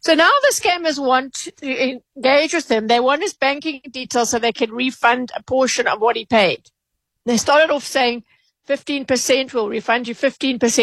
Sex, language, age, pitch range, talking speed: female, English, 50-69, 230-290 Hz, 185 wpm